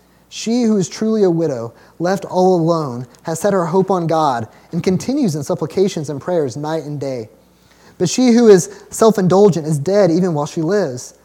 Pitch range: 160-200 Hz